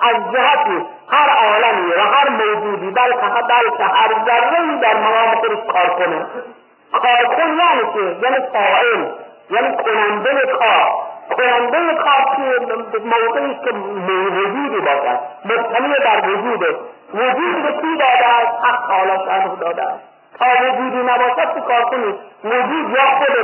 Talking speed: 140 wpm